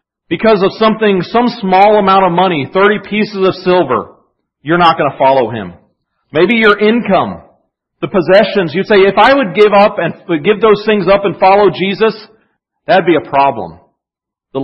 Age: 40-59